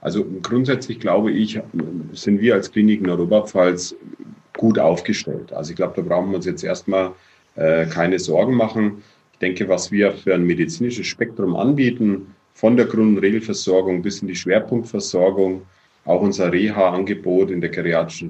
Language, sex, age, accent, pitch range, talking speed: German, male, 40-59, German, 95-110 Hz, 155 wpm